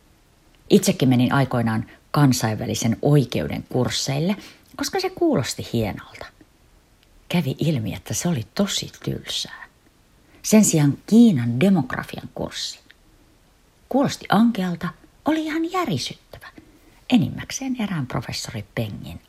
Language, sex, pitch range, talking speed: Finnish, female, 120-200 Hz, 95 wpm